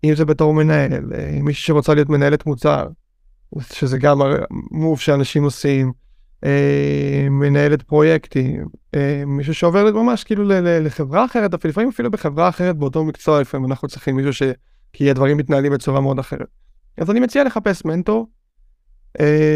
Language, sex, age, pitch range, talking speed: Hebrew, male, 20-39, 140-165 Hz, 140 wpm